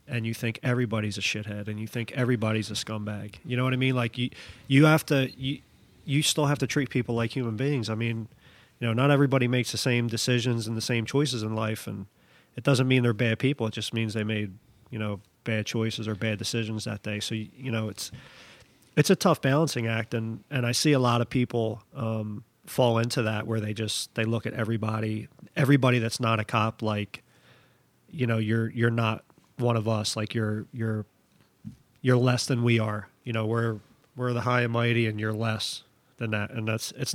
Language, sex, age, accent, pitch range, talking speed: English, male, 40-59, American, 110-125 Hz, 220 wpm